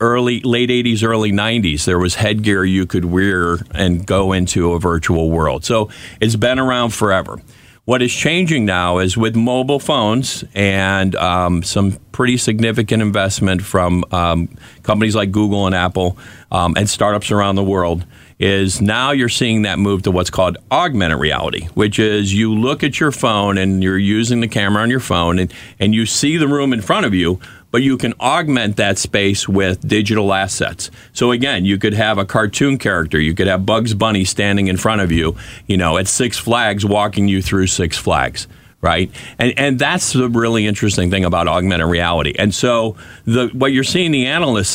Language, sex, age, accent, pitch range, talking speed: English, male, 40-59, American, 95-120 Hz, 190 wpm